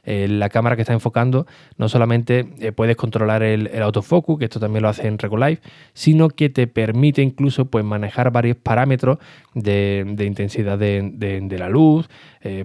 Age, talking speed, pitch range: 20-39, 175 wpm, 110-135 Hz